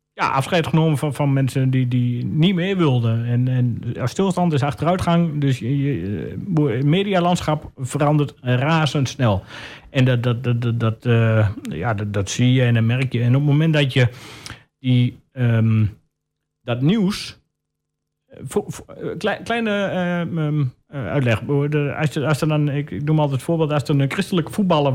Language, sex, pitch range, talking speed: Dutch, male, 125-170 Hz, 145 wpm